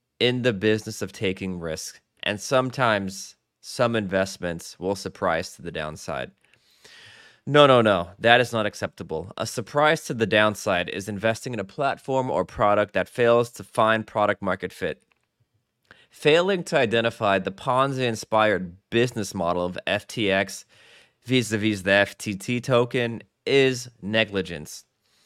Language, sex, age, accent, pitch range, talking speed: English, male, 20-39, American, 100-130 Hz, 130 wpm